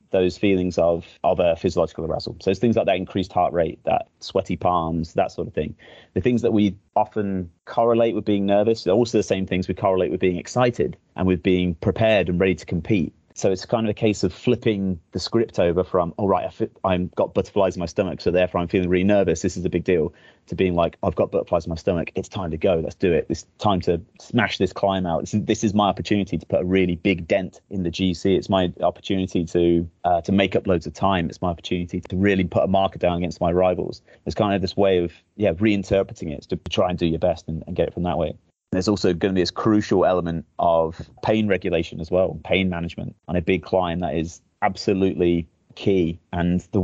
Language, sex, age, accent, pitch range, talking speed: English, male, 30-49, British, 90-100 Hz, 240 wpm